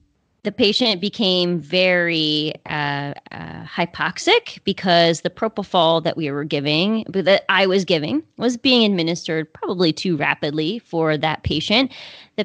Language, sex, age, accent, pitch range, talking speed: English, female, 30-49, American, 165-205 Hz, 135 wpm